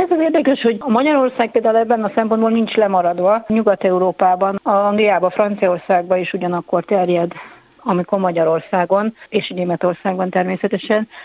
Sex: female